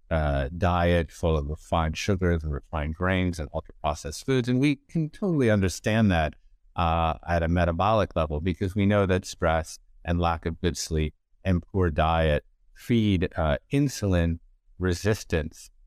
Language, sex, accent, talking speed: English, male, American, 155 wpm